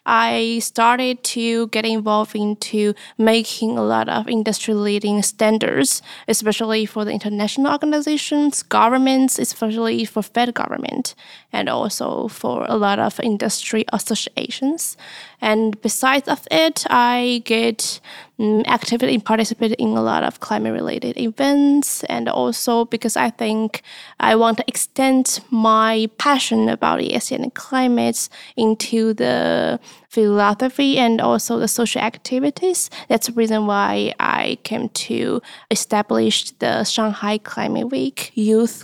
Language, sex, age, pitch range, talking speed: English, female, 20-39, 215-245 Hz, 130 wpm